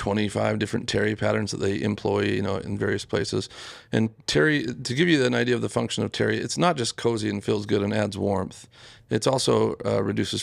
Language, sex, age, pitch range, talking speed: English, male, 40-59, 105-120 Hz, 220 wpm